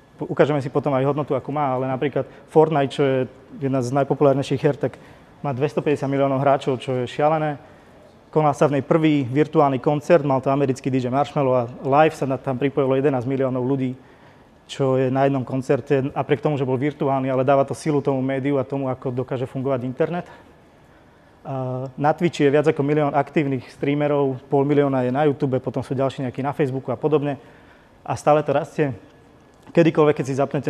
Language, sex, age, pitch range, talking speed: Slovak, male, 30-49, 130-145 Hz, 185 wpm